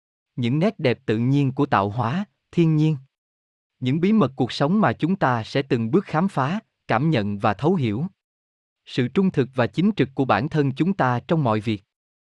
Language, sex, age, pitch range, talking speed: Vietnamese, male, 20-39, 115-165 Hz, 205 wpm